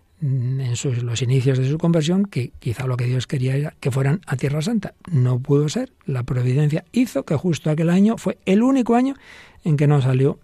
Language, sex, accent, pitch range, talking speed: Spanish, male, Spanish, 120-145 Hz, 205 wpm